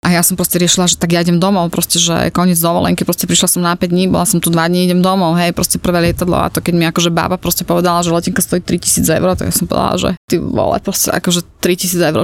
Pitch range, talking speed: 170-190 Hz, 270 wpm